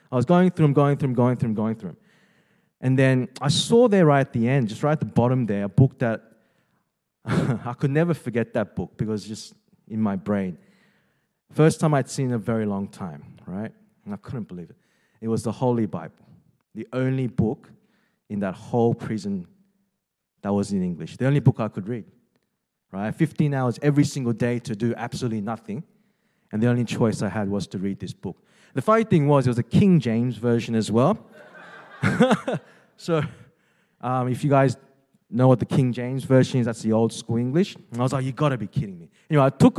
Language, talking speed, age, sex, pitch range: English, 220 wpm, 20-39, male, 120-170 Hz